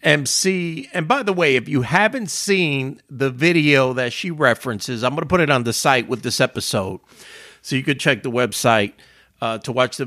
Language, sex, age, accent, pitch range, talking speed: English, male, 50-69, American, 130-180 Hz, 210 wpm